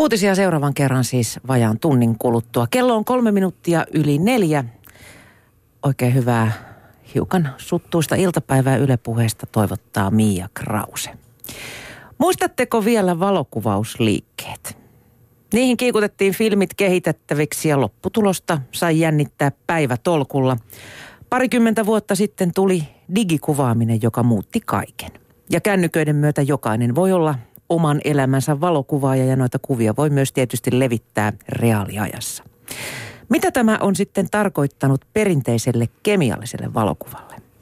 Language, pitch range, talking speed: Finnish, 115-175 Hz, 110 wpm